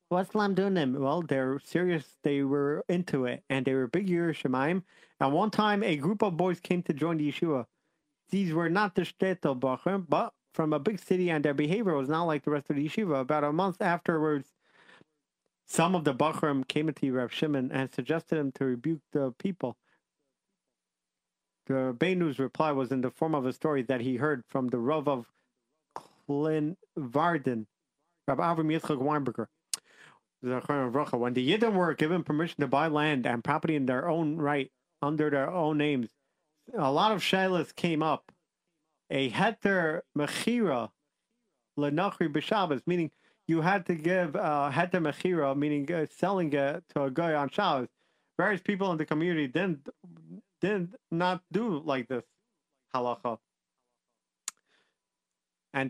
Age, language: 40-59, English